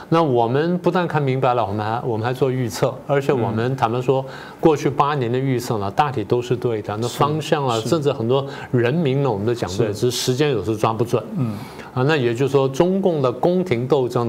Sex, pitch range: male, 120-150 Hz